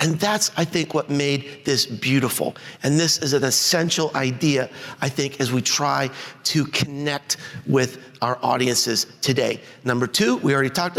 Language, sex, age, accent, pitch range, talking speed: English, male, 50-69, American, 140-190 Hz, 165 wpm